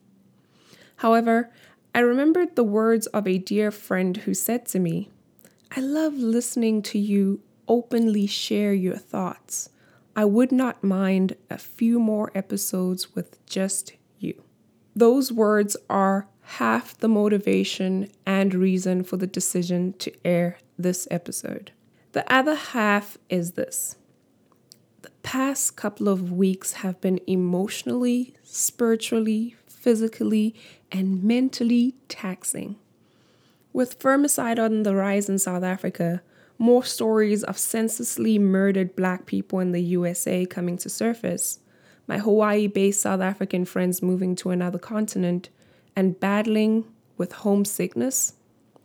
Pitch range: 185-230 Hz